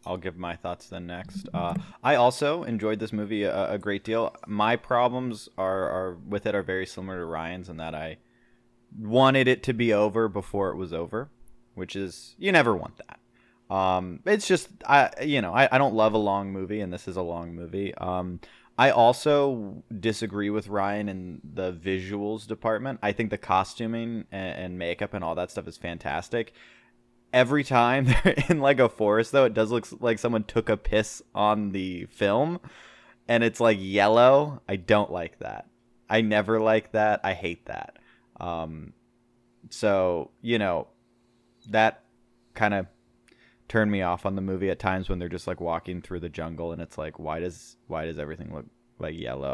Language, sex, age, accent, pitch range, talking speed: English, male, 20-39, American, 90-120 Hz, 190 wpm